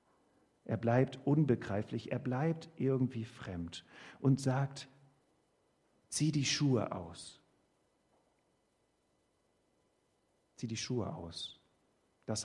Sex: male